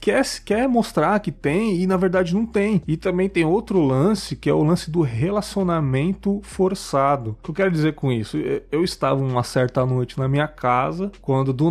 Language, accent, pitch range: Portuguese, Brazilian, 135-180 Hz